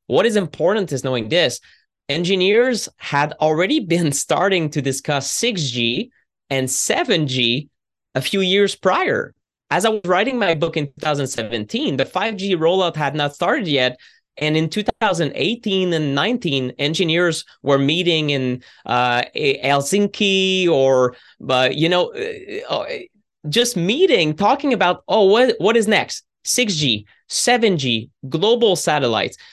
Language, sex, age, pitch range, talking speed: English, male, 20-39, 135-195 Hz, 130 wpm